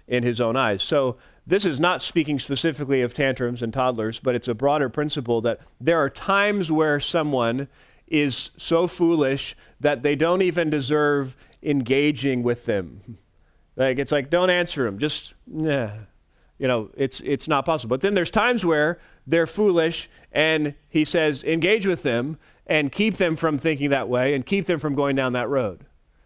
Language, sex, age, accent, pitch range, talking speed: English, male, 30-49, American, 135-175 Hz, 175 wpm